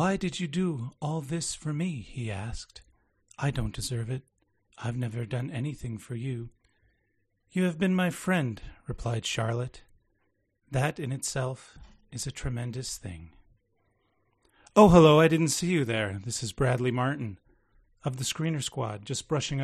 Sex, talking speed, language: male, 155 wpm, English